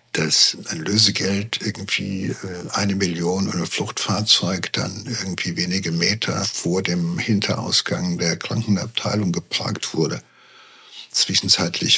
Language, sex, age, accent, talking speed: German, male, 60-79, German, 100 wpm